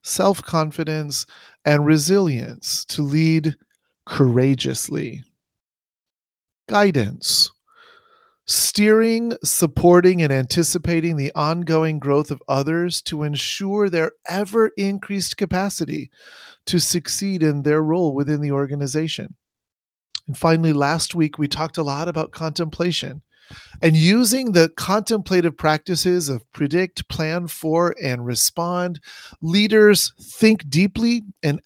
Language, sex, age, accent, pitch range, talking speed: English, male, 40-59, American, 145-180 Hz, 100 wpm